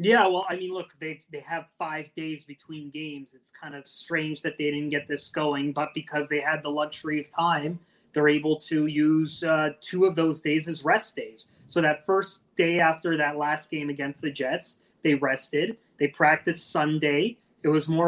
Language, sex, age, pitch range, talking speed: English, male, 30-49, 145-160 Hz, 200 wpm